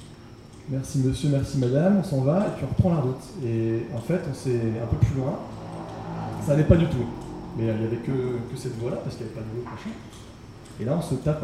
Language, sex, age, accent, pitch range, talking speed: French, male, 30-49, French, 115-145 Hz, 250 wpm